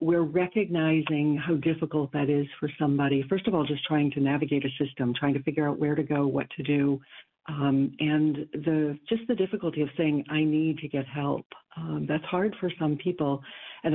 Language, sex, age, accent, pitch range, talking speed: English, female, 60-79, American, 145-165 Hz, 200 wpm